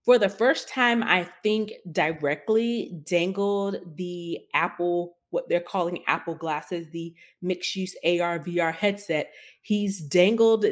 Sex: female